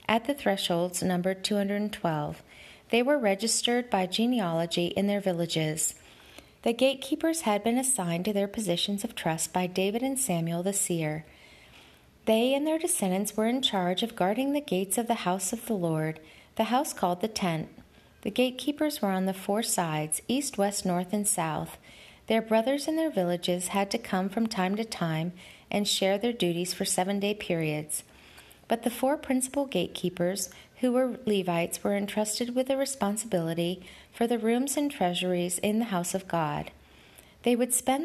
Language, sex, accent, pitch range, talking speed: English, female, American, 180-240 Hz, 170 wpm